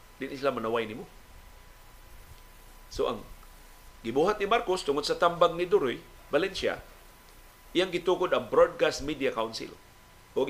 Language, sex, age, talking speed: Filipino, male, 50-69, 130 wpm